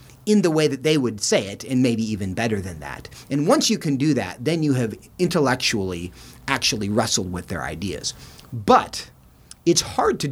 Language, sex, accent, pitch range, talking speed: English, male, American, 100-140 Hz, 190 wpm